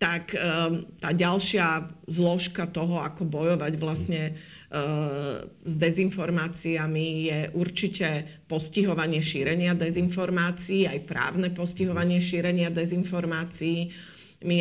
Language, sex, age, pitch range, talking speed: Slovak, female, 40-59, 160-185 Hz, 85 wpm